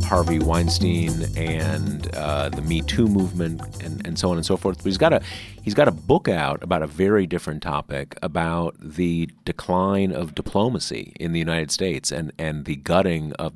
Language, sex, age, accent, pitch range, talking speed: English, male, 40-59, American, 80-90 Hz, 190 wpm